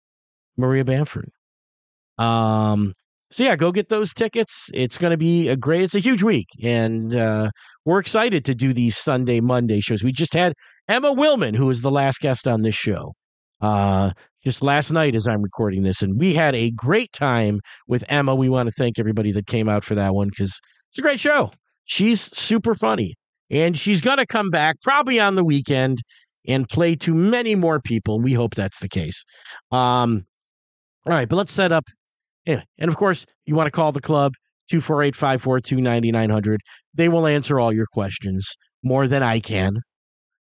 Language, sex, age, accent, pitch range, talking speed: English, male, 40-59, American, 115-180 Hz, 185 wpm